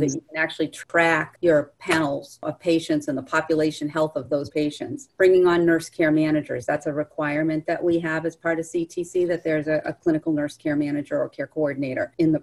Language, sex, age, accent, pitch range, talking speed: English, female, 40-59, American, 155-190 Hz, 215 wpm